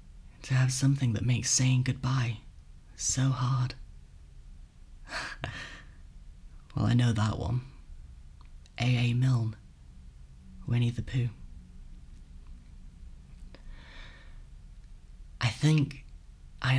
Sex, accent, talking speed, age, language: male, British, 80 wpm, 30-49, English